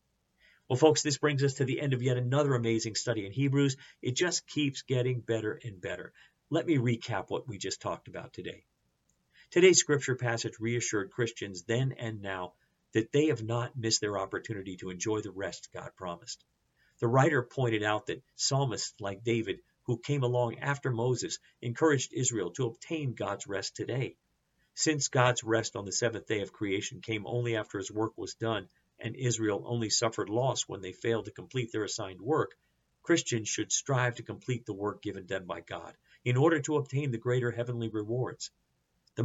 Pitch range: 110-135 Hz